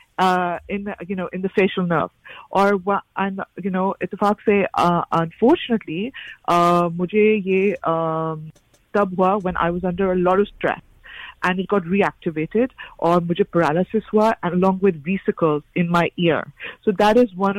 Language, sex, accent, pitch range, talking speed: English, female, Indian, 170-205 Hz, 165 wpm